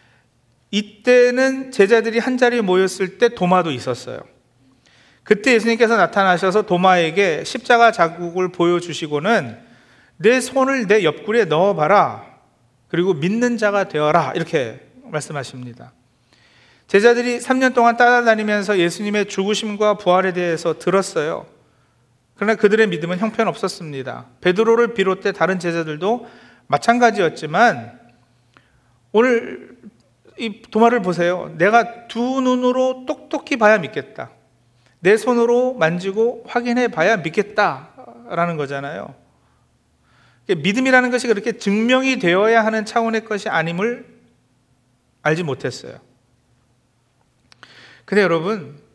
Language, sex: Korean, male